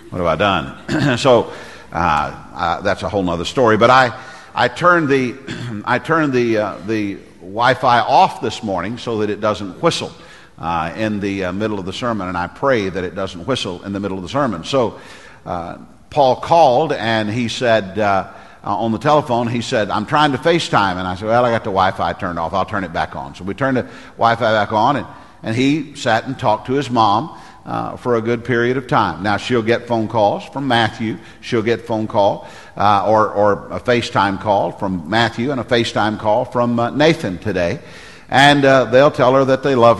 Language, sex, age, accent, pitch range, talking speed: English, male, 50-69, American, 105-125 Hz, 215 wpm